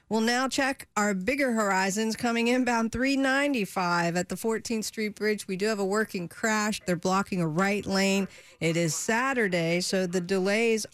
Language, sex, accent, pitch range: English, female, American, 185-235 Hz